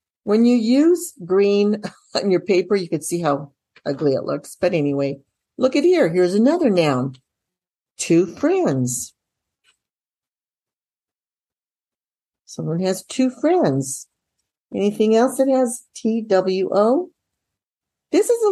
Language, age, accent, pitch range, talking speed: English, 60-79, American, 165-245 Hz, 115 wpm